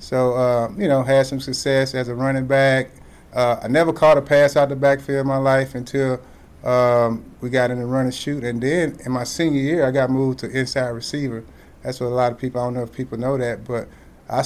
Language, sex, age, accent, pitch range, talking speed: English, male, 30-49, American, 125-150 Hz, 245 wpm